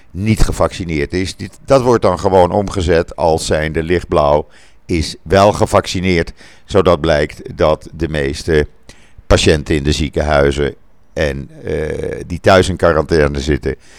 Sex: male